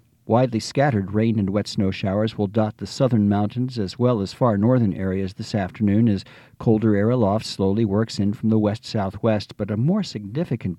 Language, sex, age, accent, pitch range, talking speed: English, male, 50-69, American, 100-125 Hz, 190 wpm